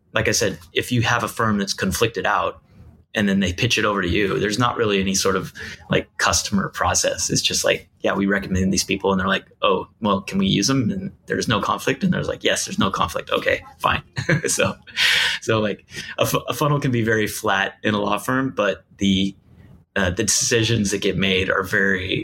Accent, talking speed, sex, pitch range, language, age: American, 220 wpm, male, 100-130 Hz, English, 20-39